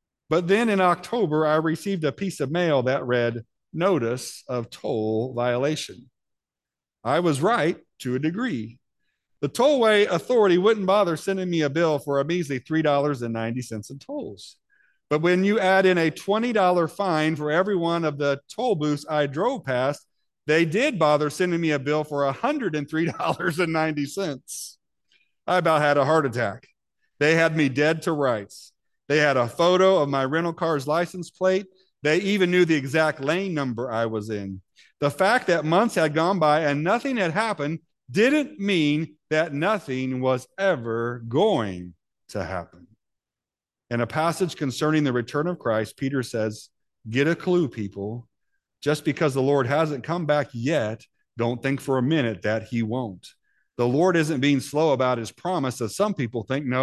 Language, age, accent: English, 50-69, American